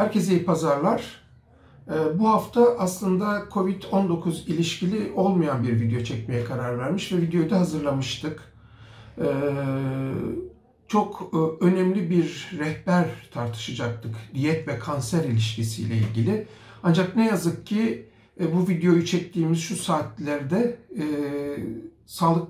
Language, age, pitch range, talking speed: Turkish, 60-79, 135-185 Hz, 100 wpm